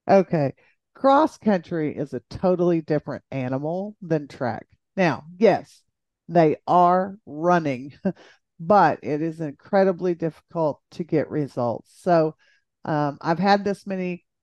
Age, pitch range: 50-69, 145-180 Hz